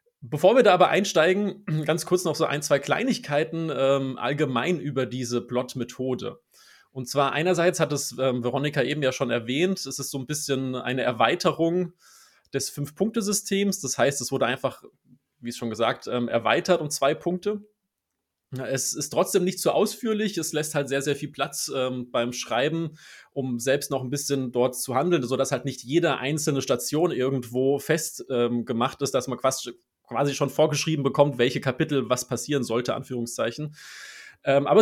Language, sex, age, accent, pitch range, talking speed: German, male, 30-49, German, 130-170 Hz, 170 wpm